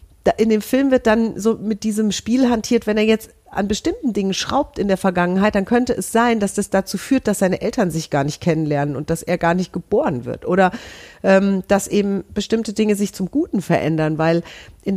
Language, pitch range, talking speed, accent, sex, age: German, 185-220 Hz, 215 wpm, German, female, 40-59